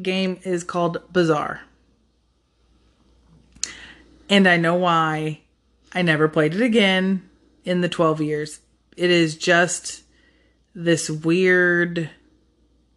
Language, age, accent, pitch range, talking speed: English, 30-49, American, 160-190 Hz, 100 wpm